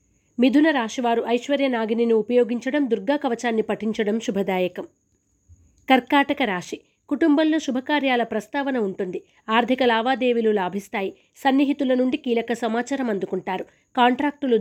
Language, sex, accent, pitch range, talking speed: Telugu, female, native, 215-265 Hz, 100 wpm